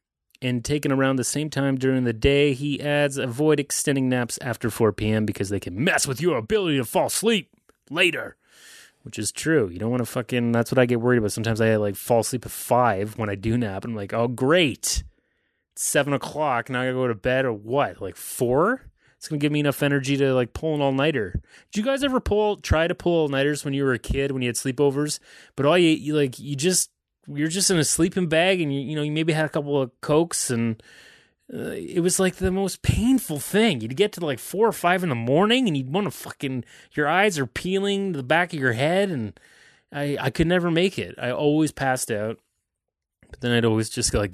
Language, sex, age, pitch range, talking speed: English, male, 30-49, 115-155 Hz, 240 wpm